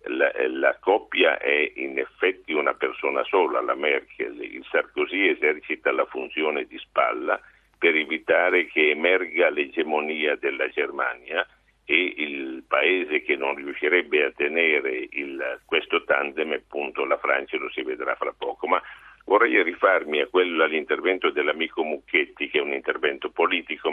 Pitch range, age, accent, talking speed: 360-455 Hz, 60-79, native, 145 wpm